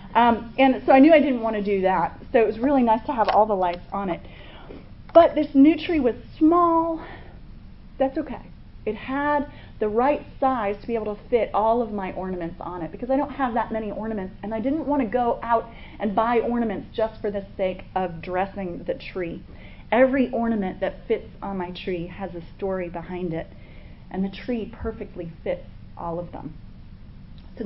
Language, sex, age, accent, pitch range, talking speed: English, female, 30-49, American, 190-250 Hz, 200 wpm